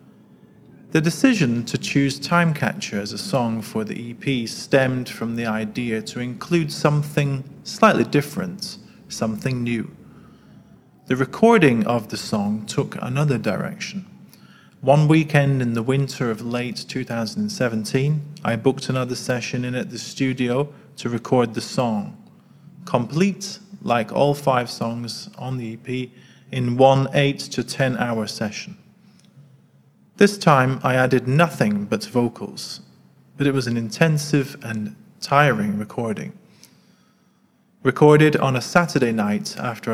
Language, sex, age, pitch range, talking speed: English, male, 30-49, 120-160 Hz, 130 wpm